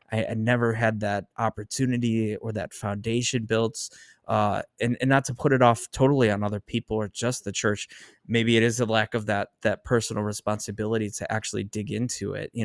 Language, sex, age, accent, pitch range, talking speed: English, male, 20-39, American, 105-120 Hz, 200 wpm